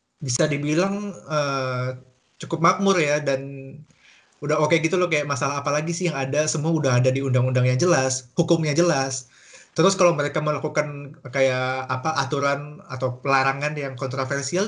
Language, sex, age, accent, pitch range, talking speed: Indonesian, male, 20-39, native, 135-170 Hz, 160 wpm